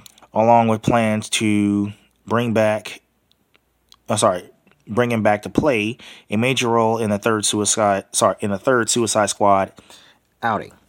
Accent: American